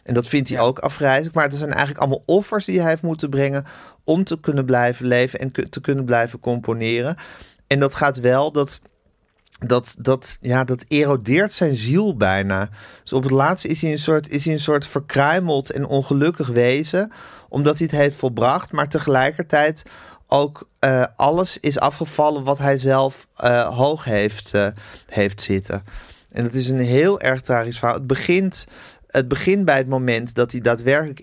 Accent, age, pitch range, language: Dutch, 40-59, 120-150 Hz, Dutch